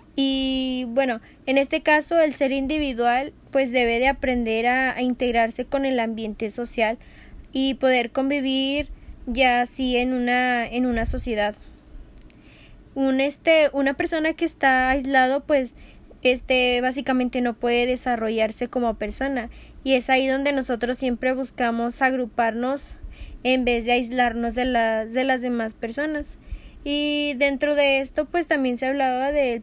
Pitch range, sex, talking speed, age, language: 240-270 Hz, female, 145 wpm, 10-29, Spanish